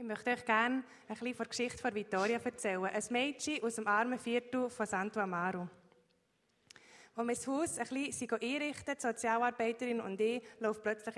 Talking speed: 165 wpm